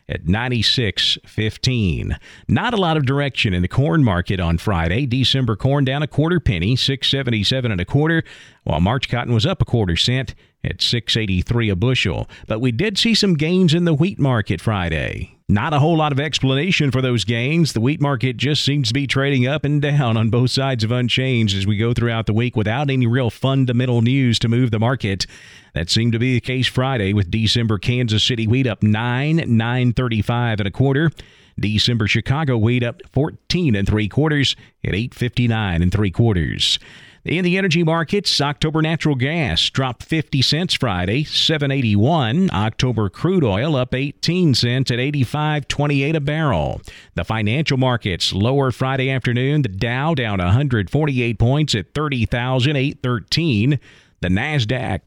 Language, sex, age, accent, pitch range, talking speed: English, male, 40-59, American, 110-140 Hz, 170 wpm